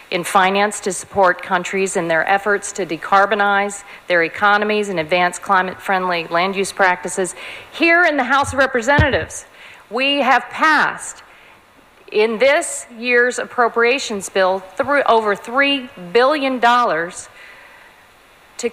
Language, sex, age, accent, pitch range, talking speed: English, female, 50-69, American, 195-250 Hz, 110 wpm